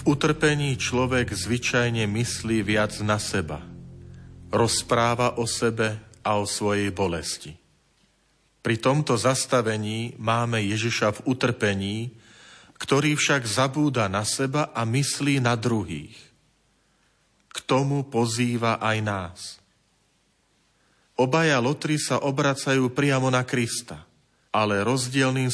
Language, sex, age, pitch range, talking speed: Slovak, male, 40-59, 110-130 Hz, 105 wpm